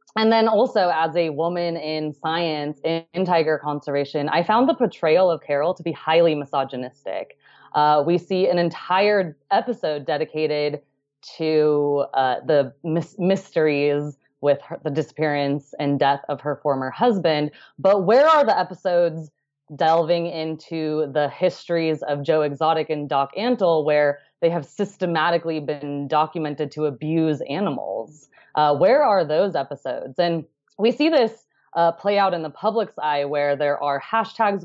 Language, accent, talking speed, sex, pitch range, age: English, American, 145 wpm, female, 150-180 Hz, 20-39